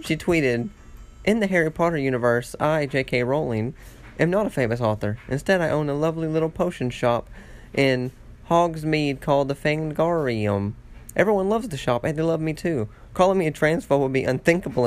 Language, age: English, 30-49